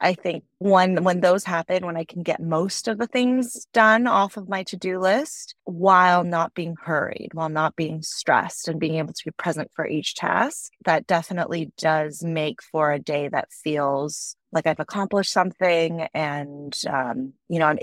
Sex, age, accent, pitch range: female, 30-49, American, 155-185 Hz